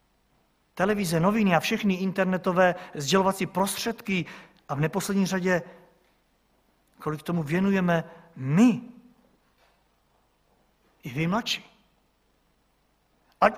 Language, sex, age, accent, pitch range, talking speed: Czech, male, 50-69, native, 170-225 Hz, 85 wpm